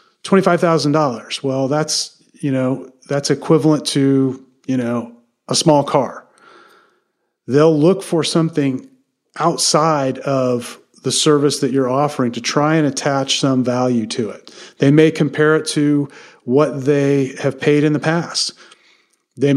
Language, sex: English, male